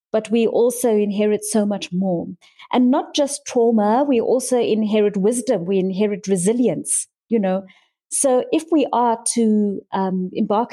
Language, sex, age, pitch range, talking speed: English, female, 30-49, 210-250 Hz, 150 wpm